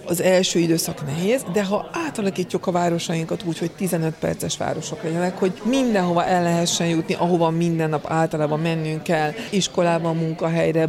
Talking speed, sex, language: 155 wpm, female, Hungarian